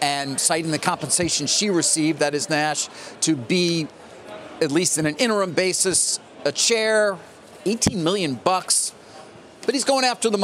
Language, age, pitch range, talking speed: English, 40-59, 130-180 Hz, 155 wpm